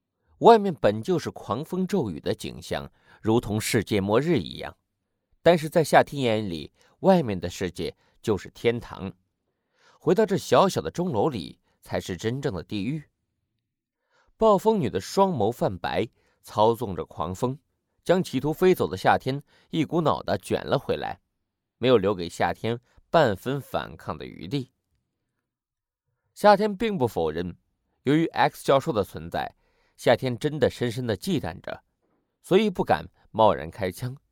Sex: male